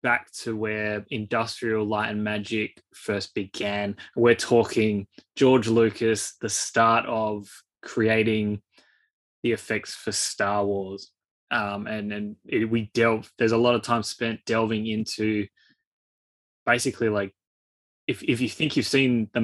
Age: 20-39